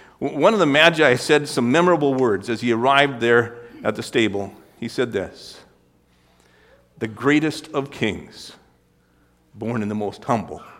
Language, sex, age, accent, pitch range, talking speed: English, male, 50-69, American, 115-170 Hz, 150 wpm